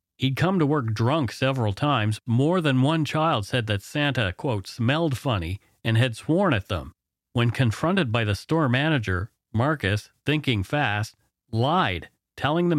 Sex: male